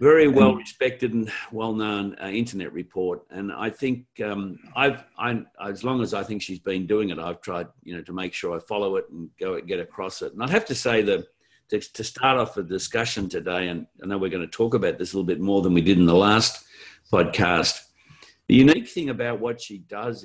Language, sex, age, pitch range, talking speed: English, male, 50-69, 90-120 Hz, 230 wpm